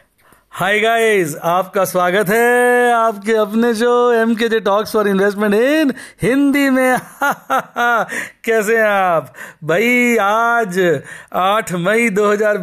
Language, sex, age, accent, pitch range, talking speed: Hindi, male, 50-69, native, 185-225 Hz, 115 wpm